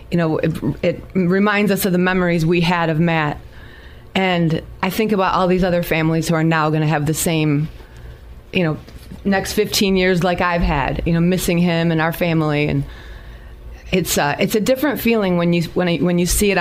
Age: 30-49